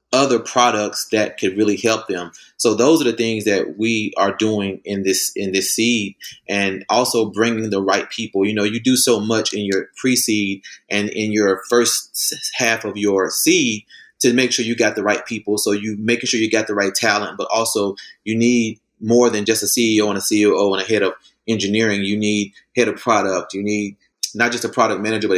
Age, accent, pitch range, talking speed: 30-49, American, 100-115 Hz, 220 wpm